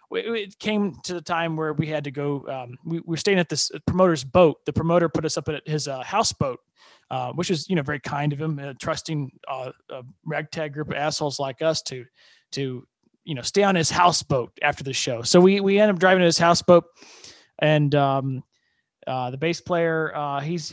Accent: American